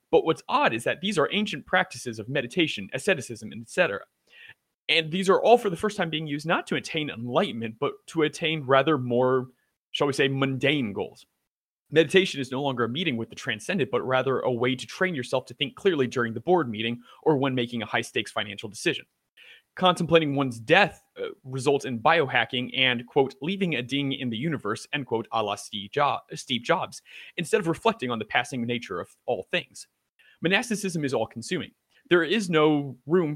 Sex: male